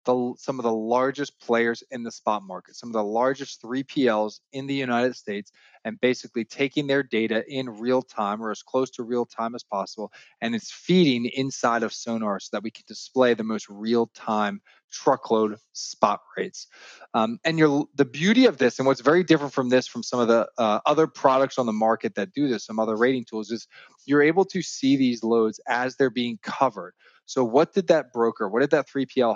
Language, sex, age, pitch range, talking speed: English, male, 20-39, 115-140 Hz, 200 wpm